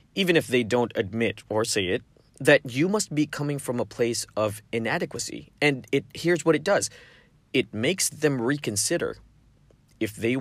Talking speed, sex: 175 wpm, male